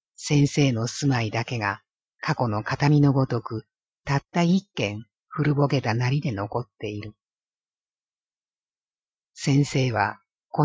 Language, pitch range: Japanese, 115-145 Hz